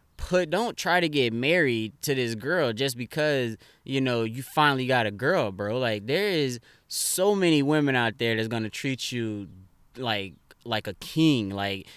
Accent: American